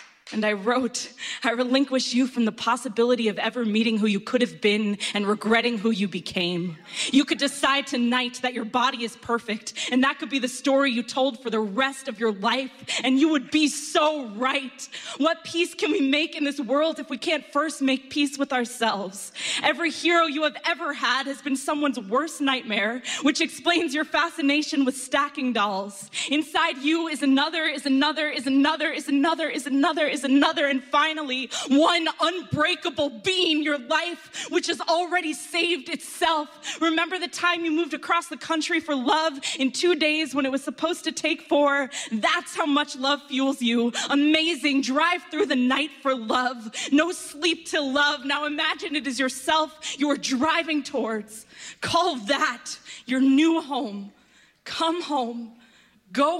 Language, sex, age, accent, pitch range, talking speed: English, female, 20-39, American, 250-315 Hz, 175 wpm